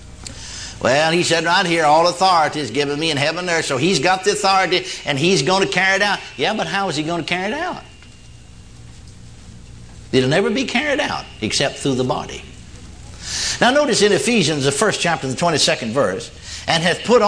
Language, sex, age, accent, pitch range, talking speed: English, male, 60-79, American, 165-240 Hz, 200 wpm